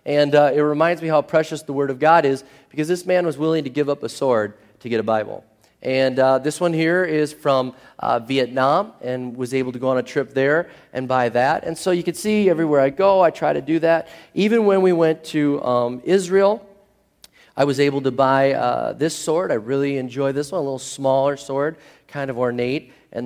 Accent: American